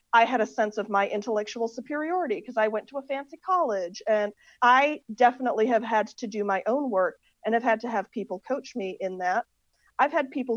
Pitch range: 200-240 Hz